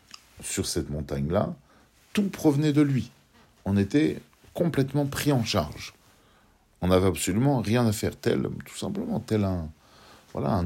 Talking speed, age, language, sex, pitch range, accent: 150 wpm, 50-69, French, male, 75-120 Hz, French